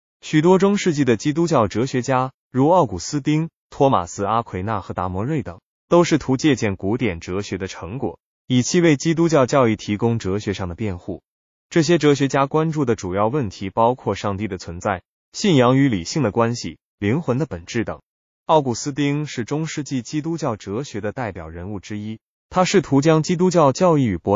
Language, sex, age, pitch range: Chinese, male, 20-39, 100-150 Hz